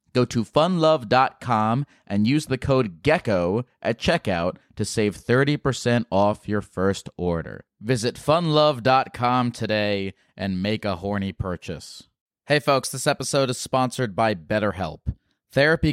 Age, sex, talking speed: 30-49, male, 130 wpm